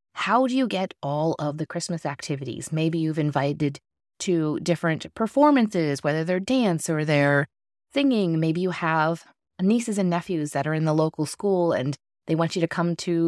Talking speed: 180 wpm